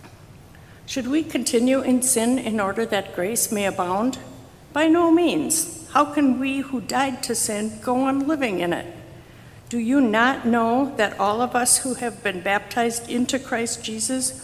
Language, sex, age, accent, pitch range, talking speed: English, female, 60-79, American, 205-250 Hz, 170 wpm